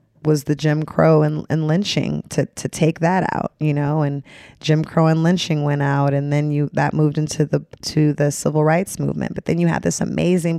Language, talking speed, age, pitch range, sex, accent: English, 220 wpm, 20-39, 150-170 Hz, female, American